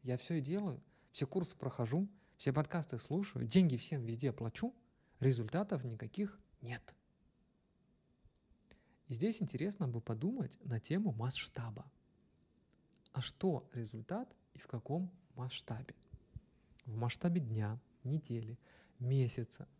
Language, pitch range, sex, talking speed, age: Russian, 120-160 Hz, male, 110 wpm, 30-49